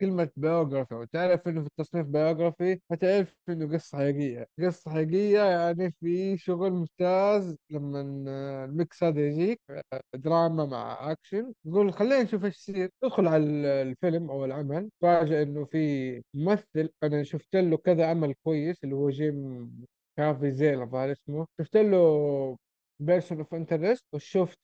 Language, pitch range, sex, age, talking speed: Arabic, 140-175 Hz, male, 20-39, 135 wpm